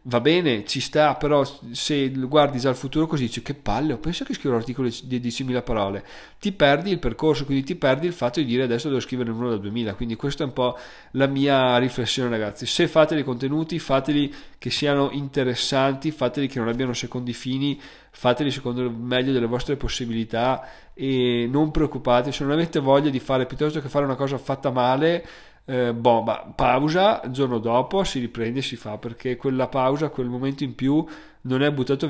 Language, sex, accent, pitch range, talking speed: Italian, male, native, 120-145 Hz, 195 wpm